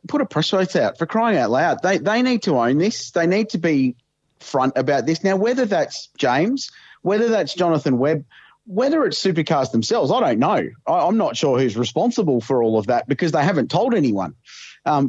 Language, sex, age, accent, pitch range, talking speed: English, male, 30-49, Australian, 130-185 Hz, 210 wpm